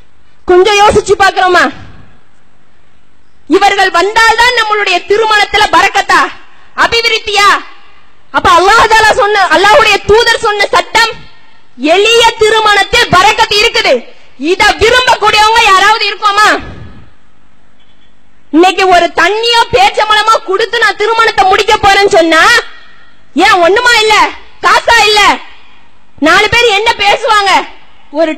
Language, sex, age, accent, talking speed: English, female, 20-39, Indian, 95 wpm